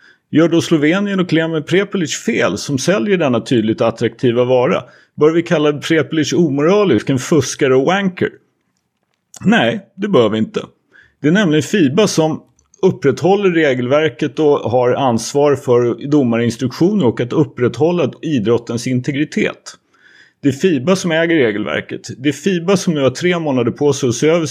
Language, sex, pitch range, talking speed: Swedish, male, 120-165 Hz, 155 wpm